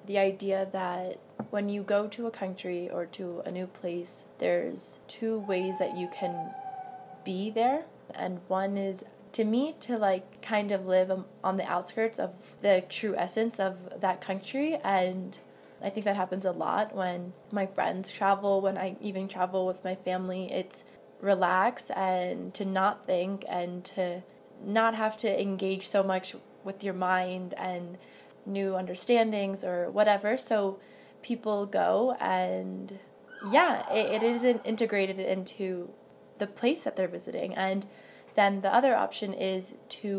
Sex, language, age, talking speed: female, English, 20-39, 155 wpm